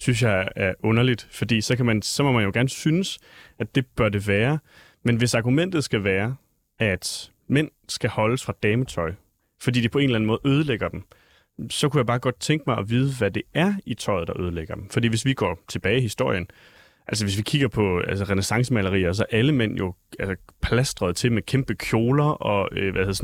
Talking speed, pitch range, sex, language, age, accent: 215 wpm, 100-125 Hz, male, Danish, 30-49, native